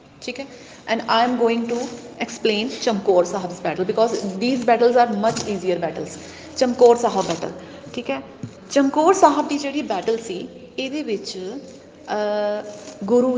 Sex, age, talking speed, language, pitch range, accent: female, 30-49, 140 wpm, Hindi, 200-250 Hz, native